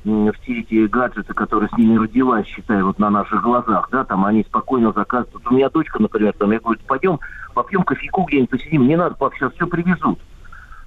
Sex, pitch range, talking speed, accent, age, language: male, 110-165 Hz, 190 wpm, native, 50-69, Russian